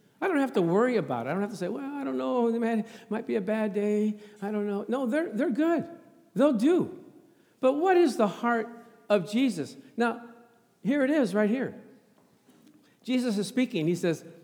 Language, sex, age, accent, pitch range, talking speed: English, male, 50-69, American, 190-255 Hz, 205 wpm